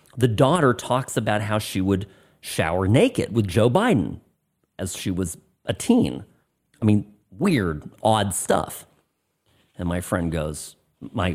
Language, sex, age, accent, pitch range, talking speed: English, male, 40-59, American, 100-155 Hz, 145 wpm